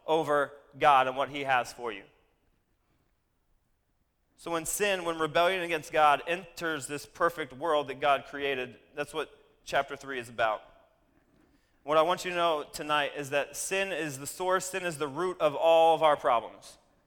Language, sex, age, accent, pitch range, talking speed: English, male, 30-49, American, 150-190 Hz, 175 wpm